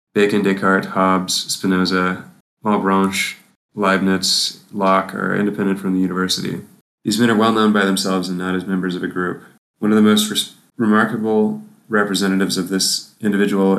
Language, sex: English, male